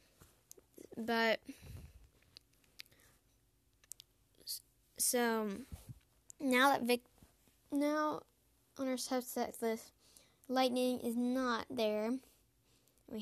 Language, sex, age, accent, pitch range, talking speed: English, female, 10-29, American, 205-245 Hz, 70 wpm